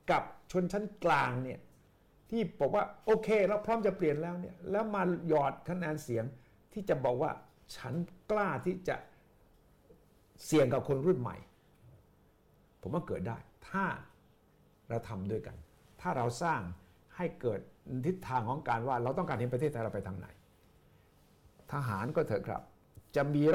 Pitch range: 115-180 Hz